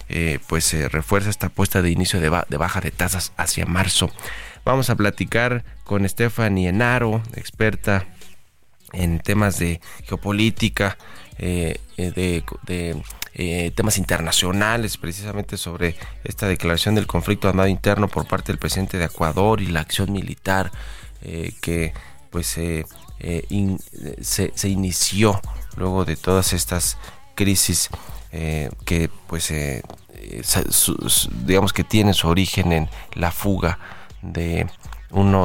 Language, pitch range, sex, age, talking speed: Spanish, 85-100 Hz, male, 30-49, 130 wpm